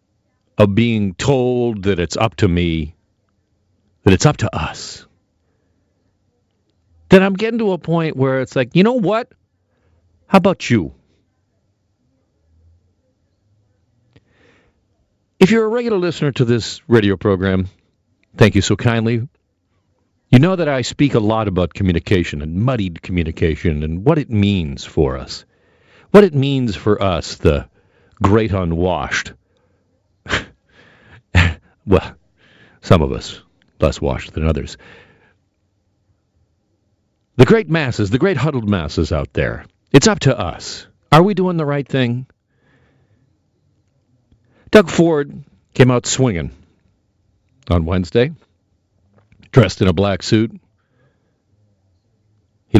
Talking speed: 120 wpm